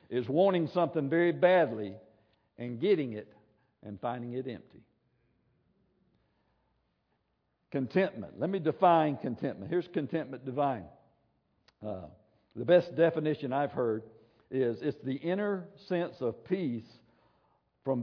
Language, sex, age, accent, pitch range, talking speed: English, male, 60-79, American, 120-165 Hz, 115 wpm